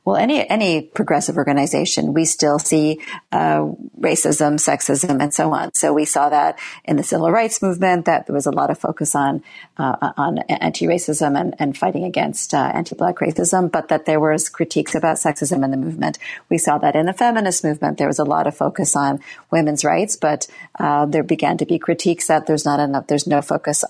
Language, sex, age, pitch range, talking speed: English, female, 40-59, 145-175 Hz, 205 wpm